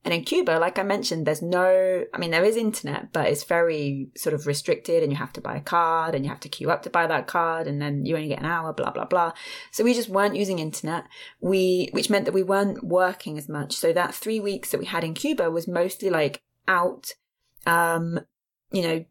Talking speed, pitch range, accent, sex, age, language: 240 wpm, 165-210 Hz, British, female, 20-39, English